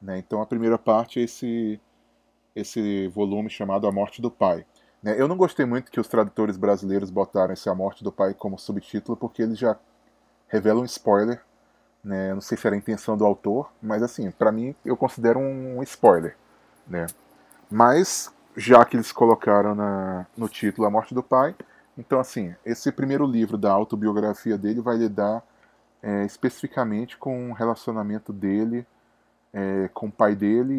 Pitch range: 105-120 Hz